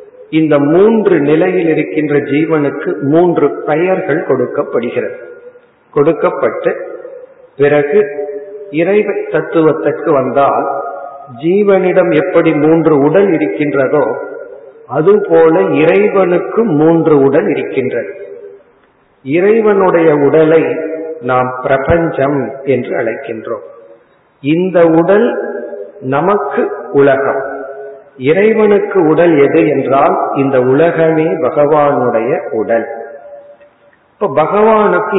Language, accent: Tamil, native